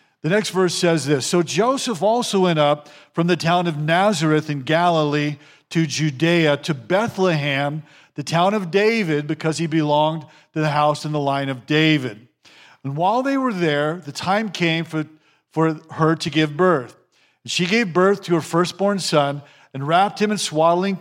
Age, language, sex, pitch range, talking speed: 50-69, English, male, 150-190 Hz, 175 wpm